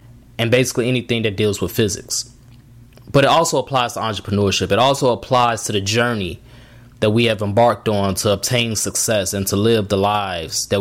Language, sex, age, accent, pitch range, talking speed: English, male, 20-39, American, 120-145 Hz, 185 wpm